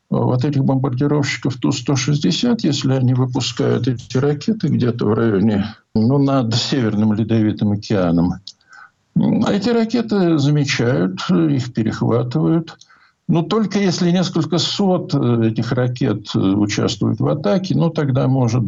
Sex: male